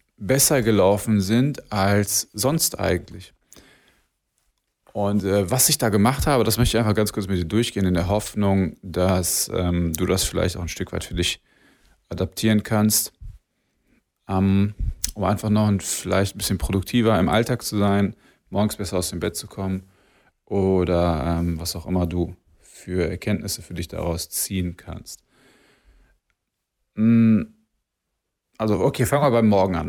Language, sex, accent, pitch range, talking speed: German, male, German, 90-115 Hz, 155 wpm